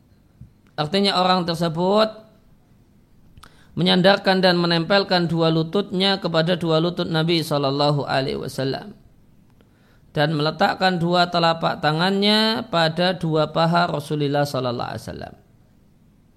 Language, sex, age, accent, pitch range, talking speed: Indonesian, male, 40-59, native, 140-180 Hz, 100 wpm